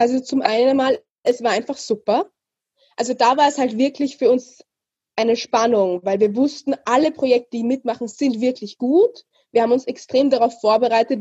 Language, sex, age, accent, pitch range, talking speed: German, female, 20-39, German, 230-285 Hz, 180 wpm